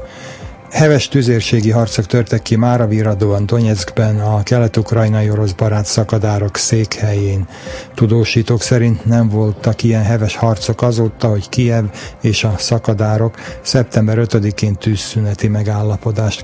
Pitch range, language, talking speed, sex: 105-115 Hz, Slovak, 115 wpm, male